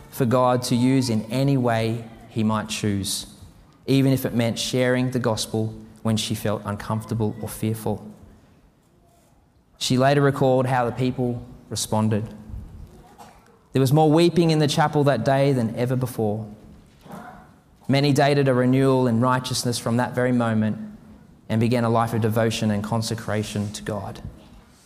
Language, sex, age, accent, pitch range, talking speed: English, male, 20-39, Australian, 105-130 Hz, 150 wpm